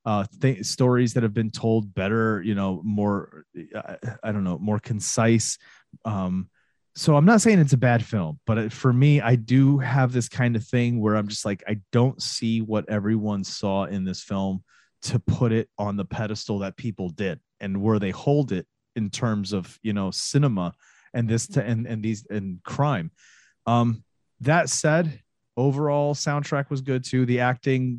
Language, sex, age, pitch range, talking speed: English, male, 30-49, 105-130 Hz, 175 wpm